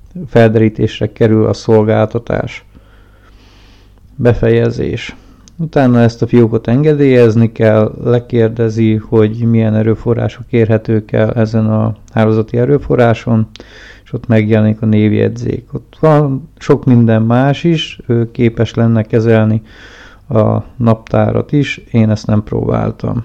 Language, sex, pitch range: Hungarian, male, 110-120 Hz